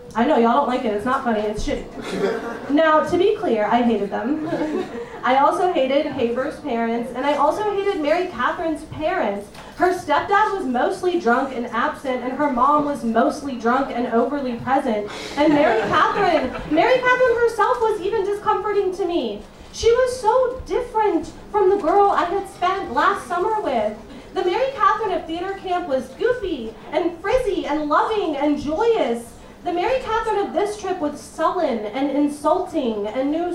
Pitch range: 250-355 Hz